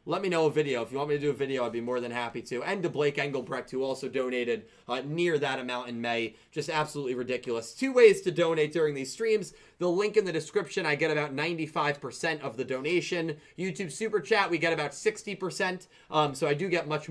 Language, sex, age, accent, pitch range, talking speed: English, male, 20-39, American, 150-195 Hz, 235 wpm